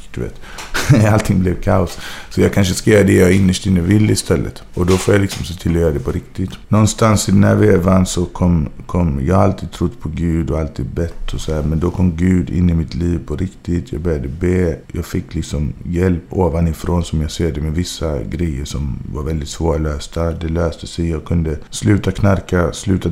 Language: English